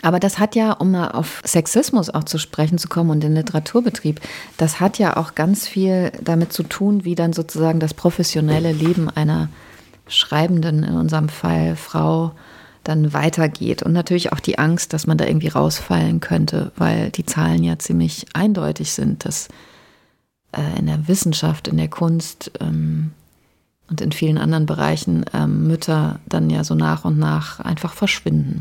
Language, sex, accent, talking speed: German, female, German, 170 wpm